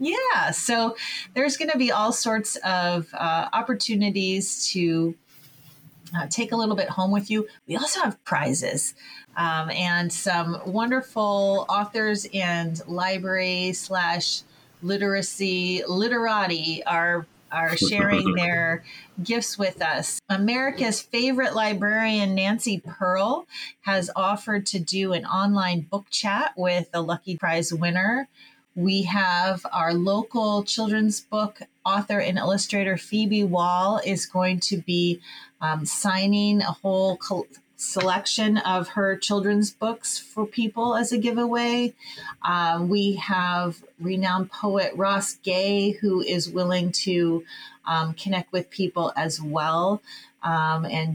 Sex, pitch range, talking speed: female, 175-210 Hz, 125 wpm